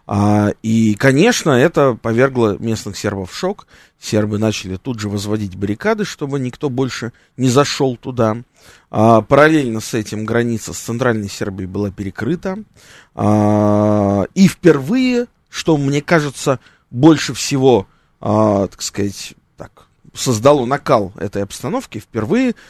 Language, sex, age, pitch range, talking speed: Russian, male, 20-39, 105-155 Hz, 125 wpm